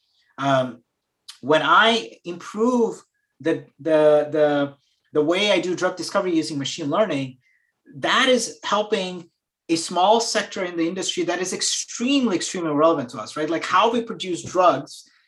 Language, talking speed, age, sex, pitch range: English, 150 wpm, 30-49, male, 155-210 Hz